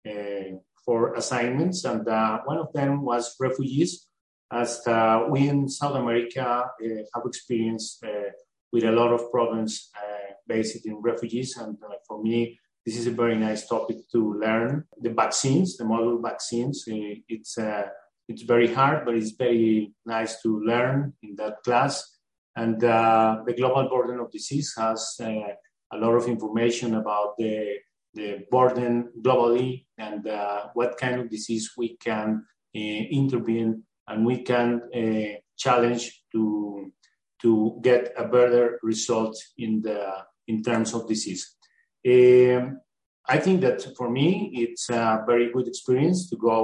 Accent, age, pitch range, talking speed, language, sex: Mexican, 30-49, 110-125 Hz, 150 wpm, English, male